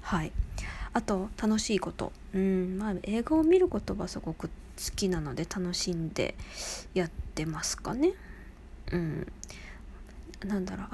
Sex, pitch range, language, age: female, 185-240 Hz, Japanese, 20-39